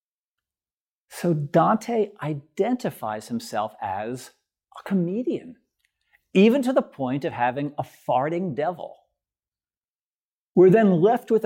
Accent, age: American, 50-69